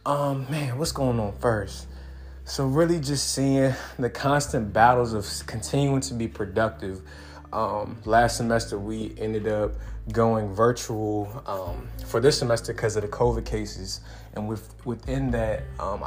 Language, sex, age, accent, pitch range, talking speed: English, male, 20-39, American, 105-120 Hz, 150 wpm